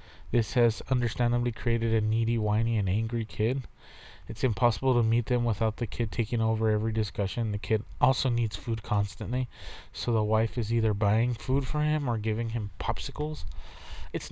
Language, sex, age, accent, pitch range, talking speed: English, male, 20-39, American, 105-125 Hz, 175 wpm